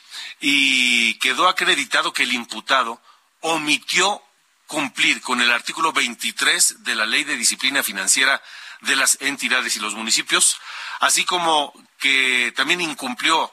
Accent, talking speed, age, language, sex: Mexican, 130 wpm, 40-59, Spanish, male